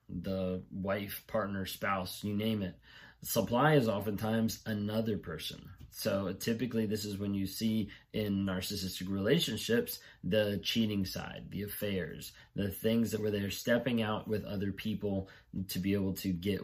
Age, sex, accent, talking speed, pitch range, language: 20-39, male, American, 150 wpm, 95-115 Hz, English